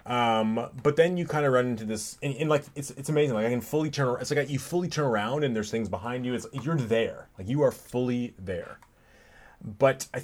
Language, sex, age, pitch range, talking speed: English, male, 30-49, 110-135 Hz, 245 wpm